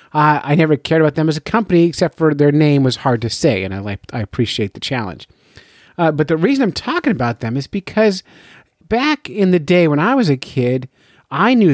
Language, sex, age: English, male, 30-49